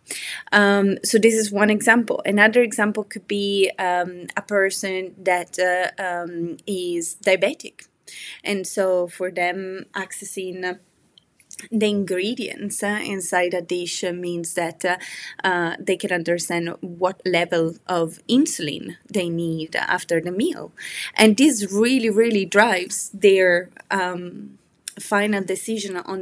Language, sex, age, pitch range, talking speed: English, female, 20-39, 180-210 Hz, 125 wpm